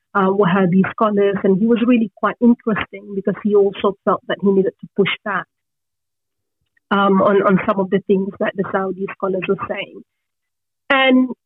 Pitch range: 195-230 Hz